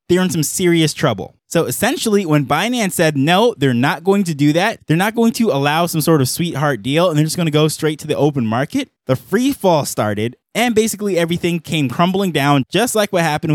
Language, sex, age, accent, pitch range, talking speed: English, male, 20-39, American, 135-190 Hz, 230 wpm